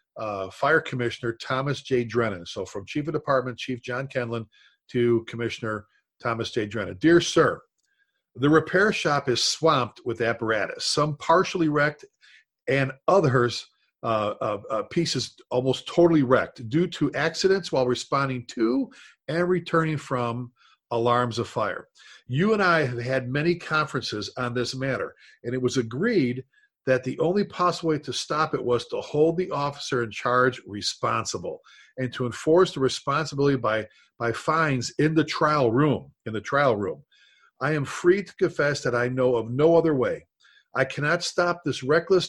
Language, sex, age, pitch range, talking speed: English, male, 50-69, 125-165 Hz, 160 wpm